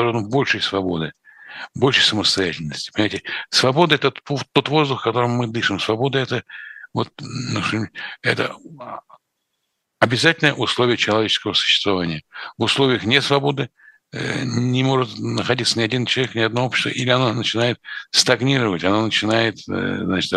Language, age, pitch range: Russian, 60-79, 105-130 Hz